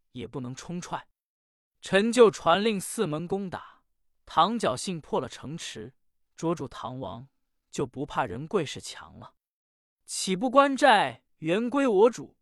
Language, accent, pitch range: Chinese, native, 145-215 Hz